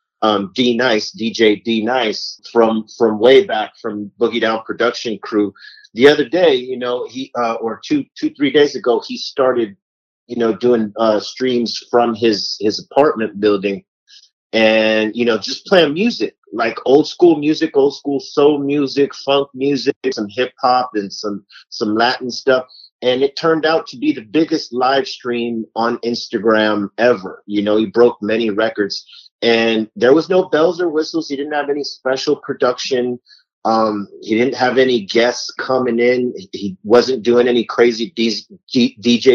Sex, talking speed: male, 165 wpm